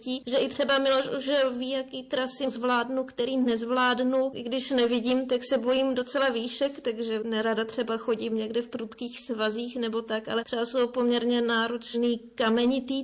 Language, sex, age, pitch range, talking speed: Slovak, female, 30-49, 220-250 Hz, 160 wpm